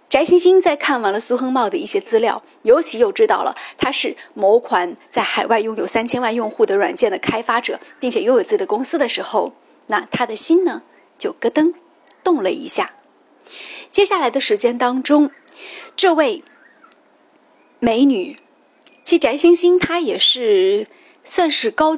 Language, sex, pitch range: Chinese, female, 245-365 Hz